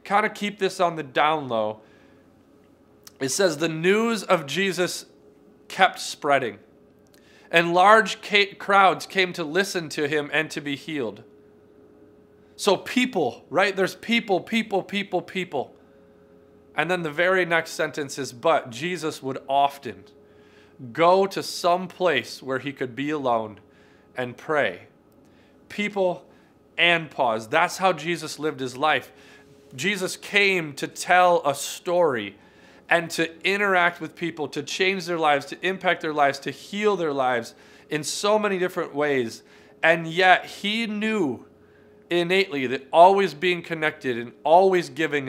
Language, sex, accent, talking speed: English, male, American, 140 wpm